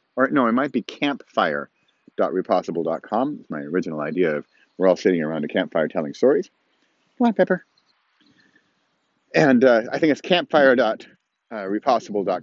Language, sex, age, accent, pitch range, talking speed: English, male, 40-59, American, 140-185 Hz, 135 wpm